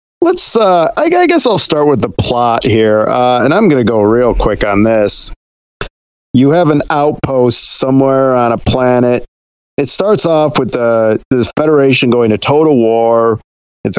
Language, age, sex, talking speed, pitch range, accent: English, 40-59, male, 175 wpm, 105-130 Hz, American